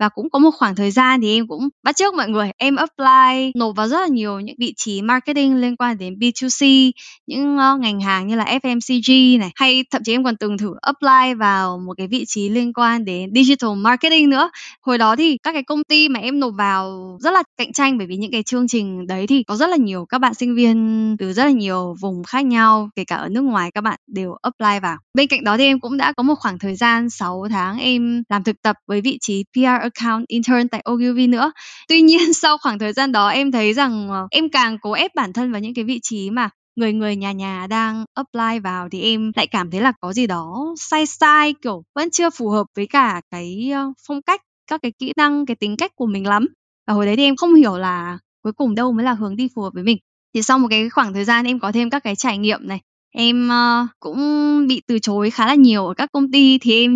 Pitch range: 210-270 Hz